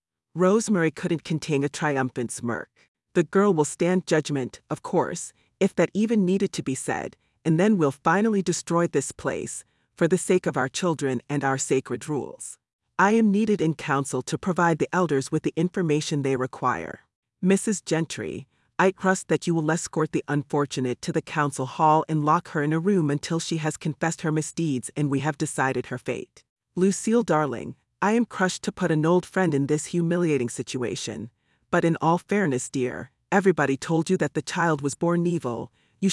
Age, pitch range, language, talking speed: 40-59, 135-180 Hz, English, 185 wpm